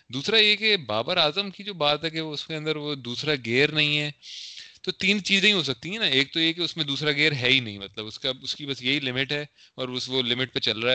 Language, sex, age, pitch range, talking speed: Urdu, male, 30-49, 115-150 Hz, 295 wpm